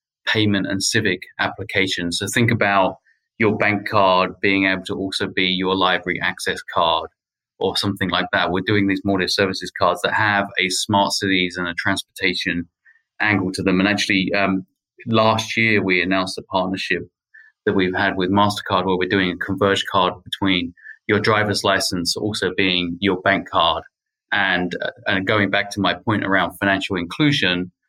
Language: English